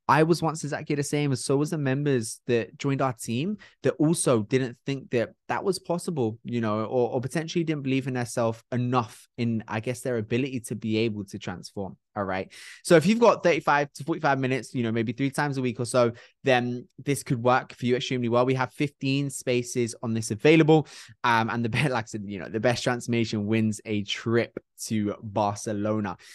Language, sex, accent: English, male, British